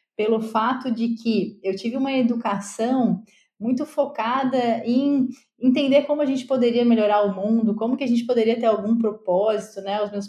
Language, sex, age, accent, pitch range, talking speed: Portuguese, female, 20-39, Brazilian, 215-265 Hz, 175 wpm